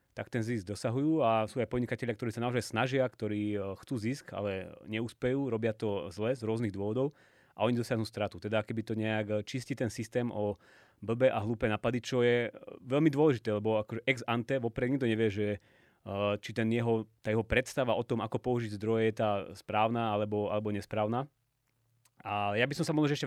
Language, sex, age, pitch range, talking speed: Slovak, male, 30-49, 105-125 Hz, 195 wpm